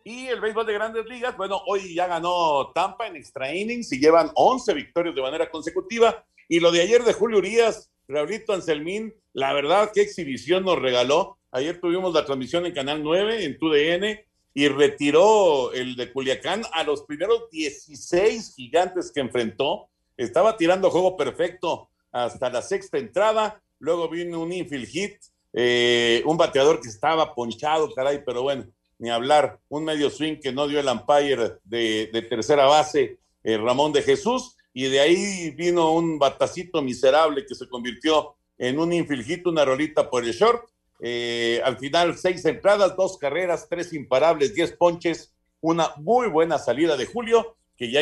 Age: 50-69